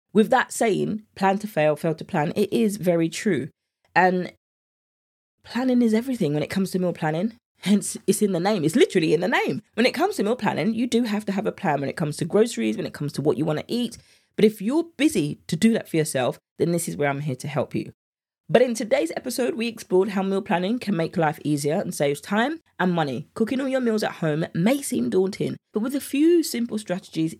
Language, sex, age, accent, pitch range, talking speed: English, female, 20-39, British, 155-220 Hz, 245 wpm